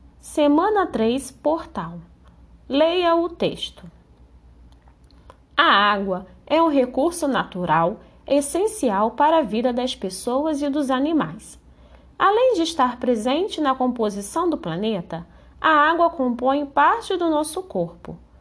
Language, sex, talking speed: Portuguese, female, 115 wpm